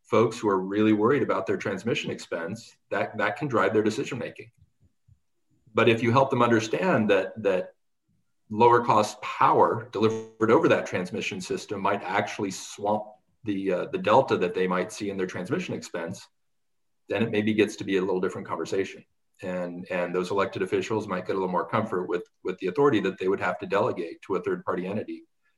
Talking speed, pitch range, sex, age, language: 195 wpm, 95-120 Hz, male, 40-59, English